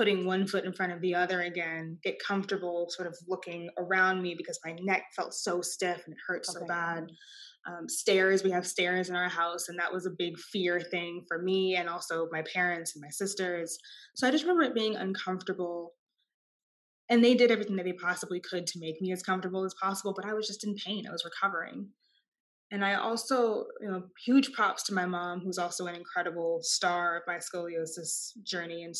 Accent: American